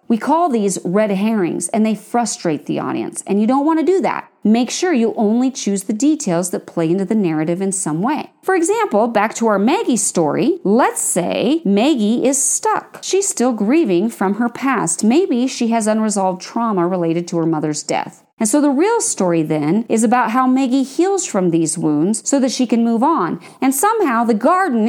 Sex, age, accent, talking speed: female, 40-59, American, 205 wpm